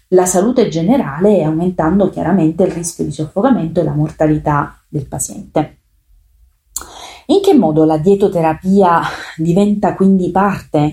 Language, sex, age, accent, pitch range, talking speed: Italian, female, 30-49, native, 155-195 Hz, 120 wpm